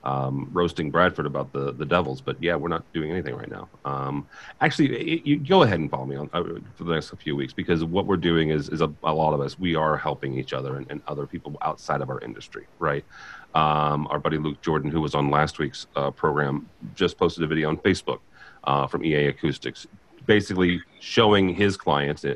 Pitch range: 75-90 Hz